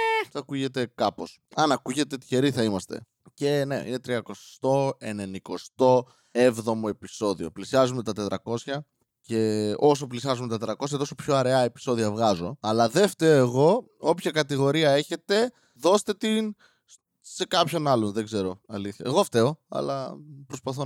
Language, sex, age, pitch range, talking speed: Greek, male, 20-39, 115-155 Hz, 130 wpm